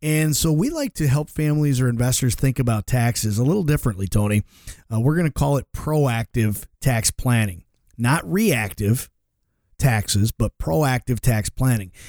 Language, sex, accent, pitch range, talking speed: English, male, American, 115-145 Hz, 160 wpm